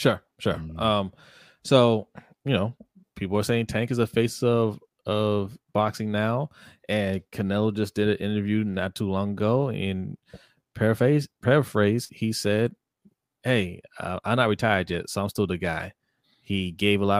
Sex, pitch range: male, 90-110 Hz